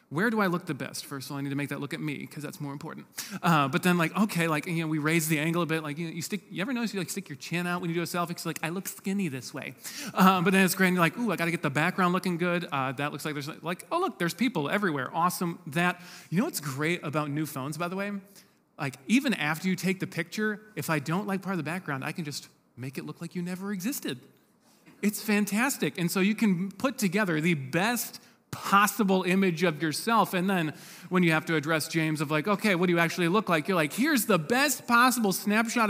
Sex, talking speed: male, 275 wpm